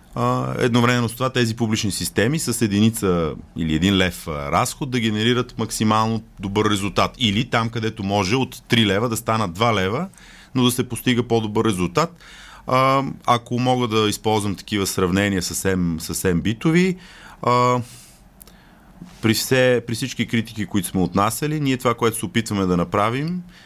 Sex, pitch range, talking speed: male, 95-125 Hz, 150 wpm